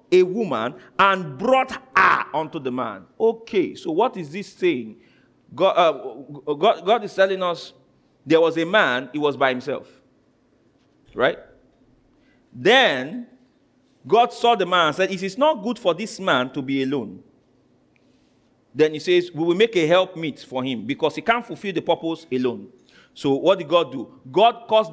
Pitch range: 160-255 Hz